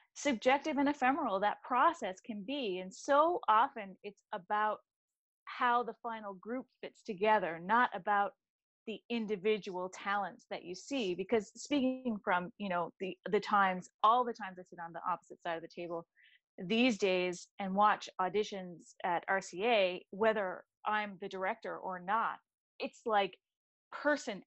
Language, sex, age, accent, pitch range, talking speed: English, female, 30-49, American, 190-235 Hz, 150 wpm